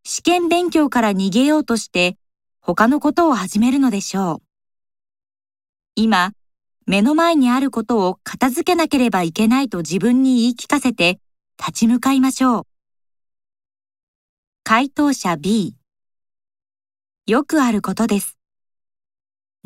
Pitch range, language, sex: 180-265 Hz, Japanese, female